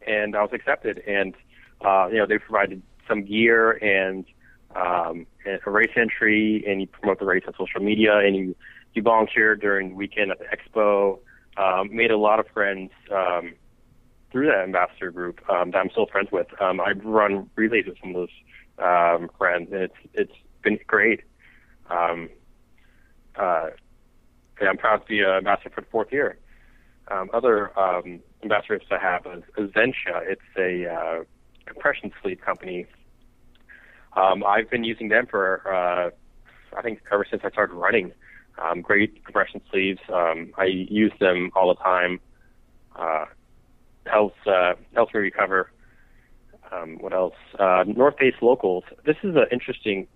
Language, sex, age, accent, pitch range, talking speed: English, male, 30-49, American, 90-110 Hz, 160 wpm